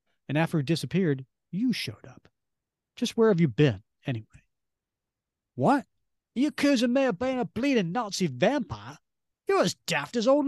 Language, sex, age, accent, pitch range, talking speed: English, male, 40-59, American, 125-190 Hz, 160 wpm